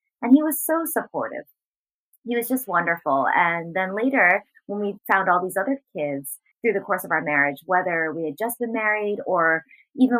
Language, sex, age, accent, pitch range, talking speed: English, female, 20-39, American, 180-240 Hz, 195 wpm